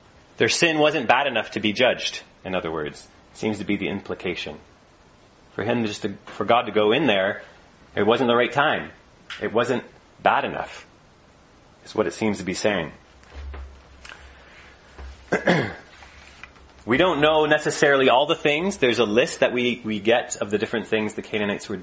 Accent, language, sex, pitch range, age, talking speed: American, English, male, 95-130 Hz, 30-49, 175 wpm